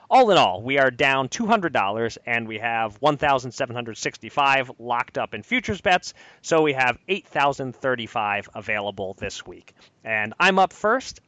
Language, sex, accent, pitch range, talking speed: English, male, American, 115-150 Hz, 145 wpm